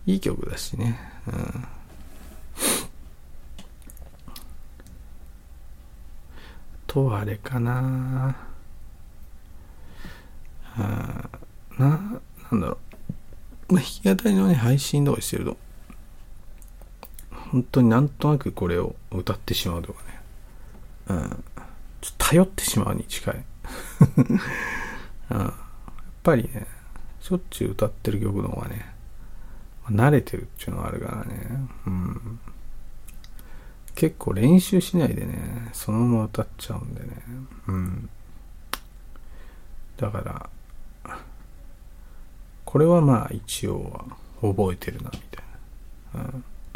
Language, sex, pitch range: Japanese, male, 90-130 Hz